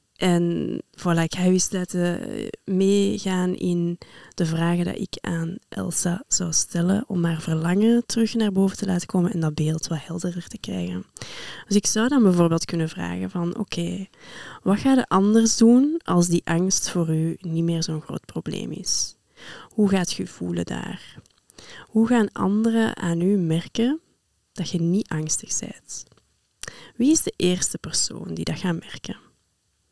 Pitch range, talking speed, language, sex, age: 170-210 Hz, 165 wpm, Dutch, female, 20-39